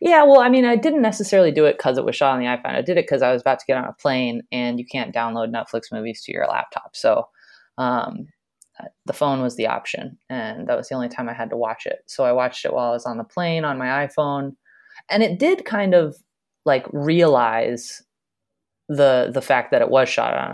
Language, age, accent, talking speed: English, 20-39, American, 245 wpm